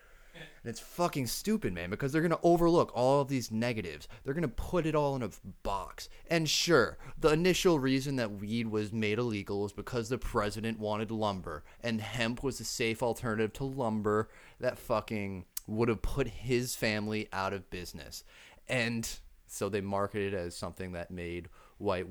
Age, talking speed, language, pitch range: 30-49, 180 wpm, English, 95-140 Hz